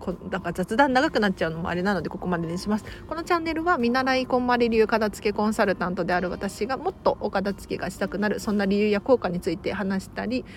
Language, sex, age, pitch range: Japanese, female, 40-59, 195-265 Hz